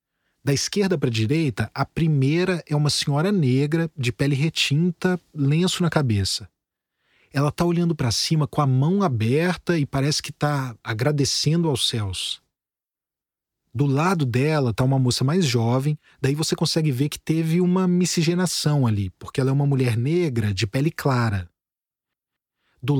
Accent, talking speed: Brazilian, 155 wpm